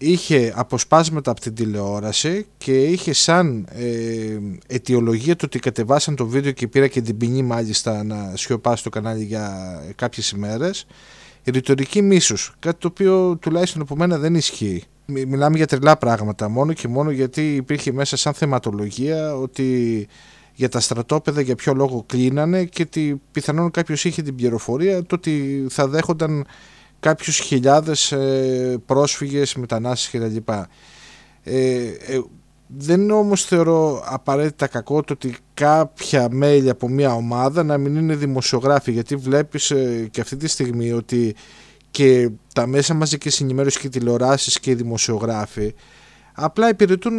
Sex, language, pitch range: male, Greek, 125-155 Hz